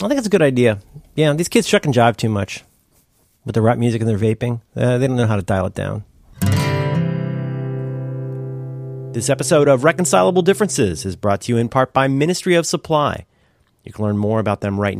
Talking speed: 210 wpm